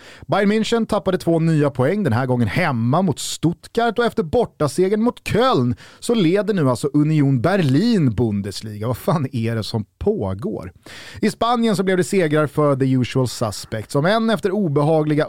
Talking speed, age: 175 wpm, 30-49